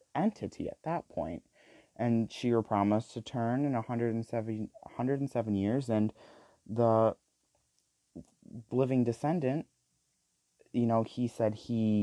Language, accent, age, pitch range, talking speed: English, American, 30-49, 95-120 Hz, 145 wpm